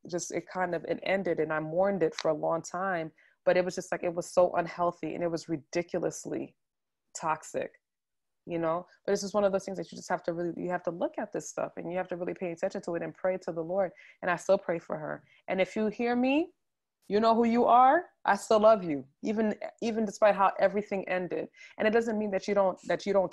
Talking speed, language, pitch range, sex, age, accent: 255 wpm, English, 170-195 Hz, female, 20-39, American